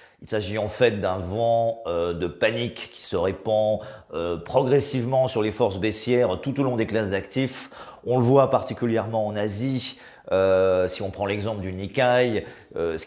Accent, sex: French, male